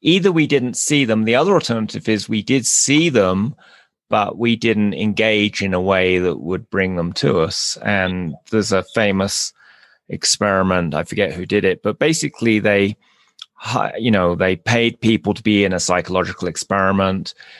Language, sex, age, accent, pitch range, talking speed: English, male, 30-49, British, 95-125 Hz, 170 wpm